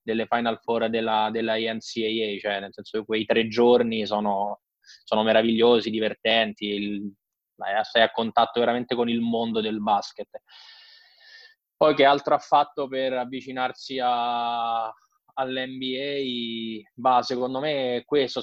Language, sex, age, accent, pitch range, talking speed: Italian, male, 20-39, native, 110-130 Hz, 135 wpm